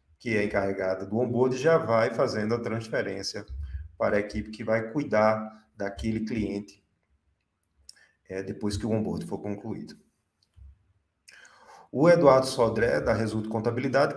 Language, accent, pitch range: Portuguese, Brazilian, 100-125 Hz